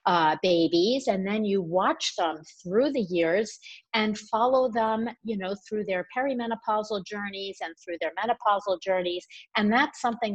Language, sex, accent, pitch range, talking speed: English, female, American, 185-235 Hz, 150 wpm